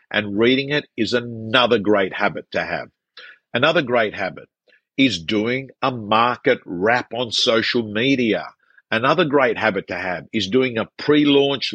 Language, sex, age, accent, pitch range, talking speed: English, male, 50-69, Australian, 105-125 Hz, 150 wpm